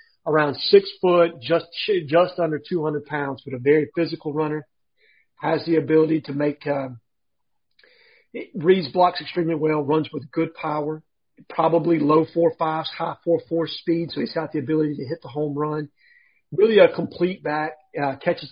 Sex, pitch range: male, 145-170 Hz